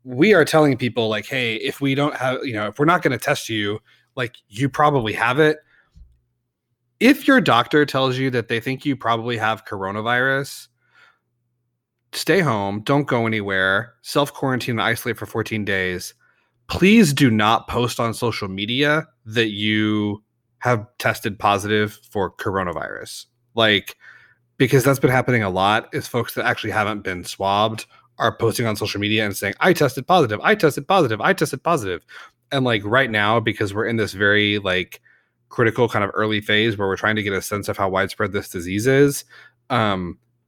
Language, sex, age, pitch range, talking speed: English, male, 30-49, 105-130 Hz, 180 wpm